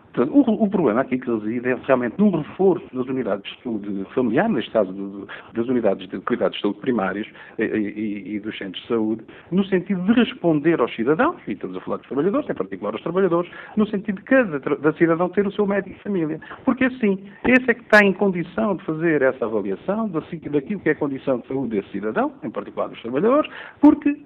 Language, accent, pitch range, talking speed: Portuguese, Portuguese, 130-200 Hz, 225 wpm